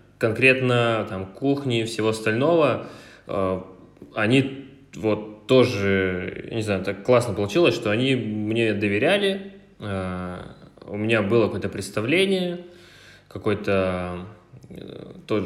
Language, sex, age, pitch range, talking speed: Russian, male, 20-39, 95-115 Hz, 95 wpm